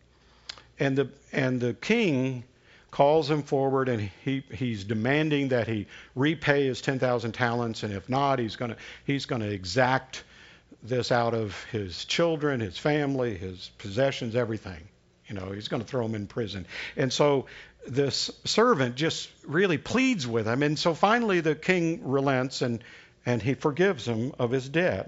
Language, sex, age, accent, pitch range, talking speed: English, male, 50-69, American, 115-150 Hz, 165 wpm